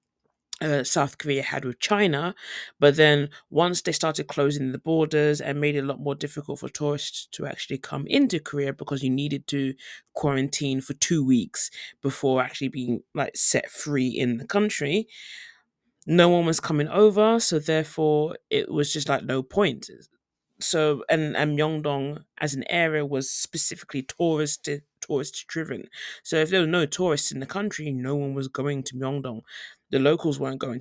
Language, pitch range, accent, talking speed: English, 130-155 Hz, British, 170 wpm